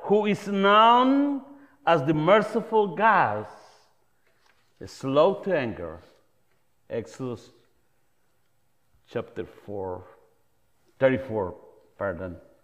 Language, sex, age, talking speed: English, male, 50-69, 70 wpm